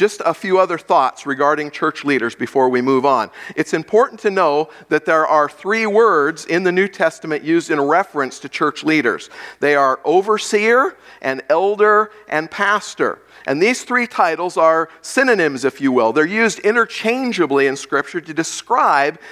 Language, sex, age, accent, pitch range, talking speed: English, male, 50-69, American, 155-210 Hz, 170 wpm